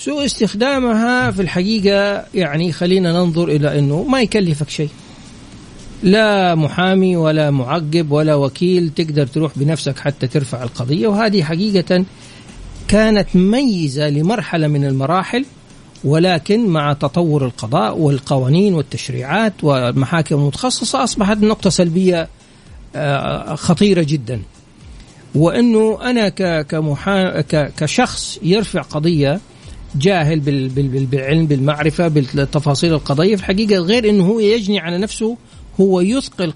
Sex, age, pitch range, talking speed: male, 50-69, 150-200 Hz, 105 wpm